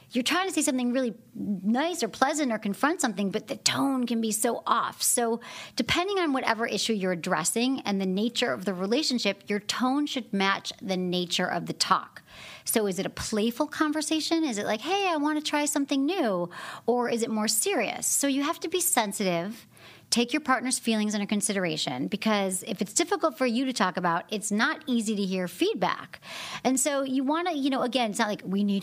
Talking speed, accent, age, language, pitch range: 210 wpm, American, 40-59, English, 195-275 Hz